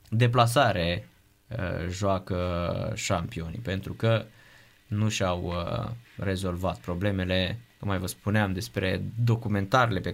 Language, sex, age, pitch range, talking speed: Romanian, male, 20-39, 100-130 Hz, 105 wpm